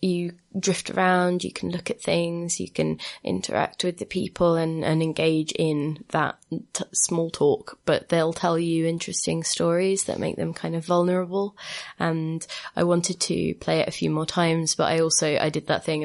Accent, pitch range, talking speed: British, 145-165 Hz, 190 wpm